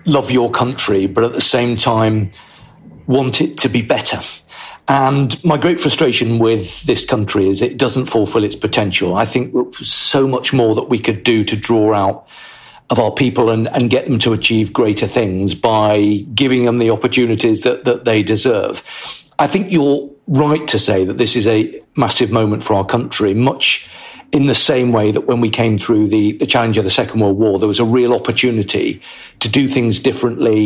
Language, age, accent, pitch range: English, 50-69, British, 110-130 Hz